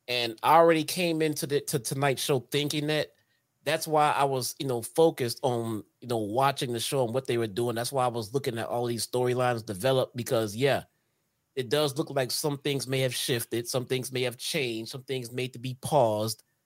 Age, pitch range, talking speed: 30-49, 115-145 Hz, 220 wpm